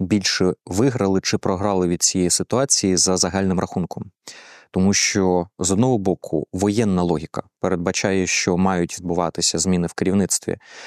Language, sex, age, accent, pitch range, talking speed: Ukrainian, male, 20-39, native, 90-105 Hz, 135 wpm